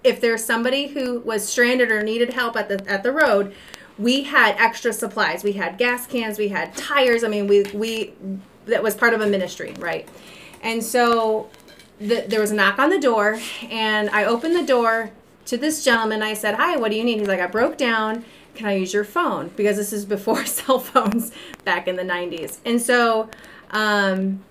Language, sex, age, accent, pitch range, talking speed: English, female, 30-49, American, 205-250 Hz, 205 wpm